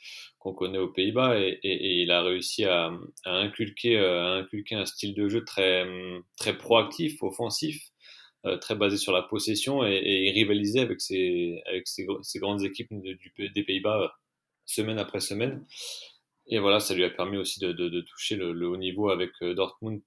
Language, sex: French, male